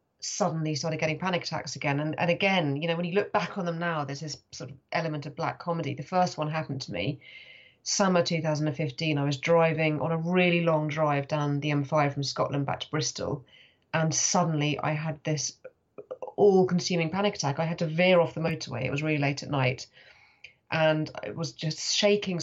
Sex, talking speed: female, 220 wpm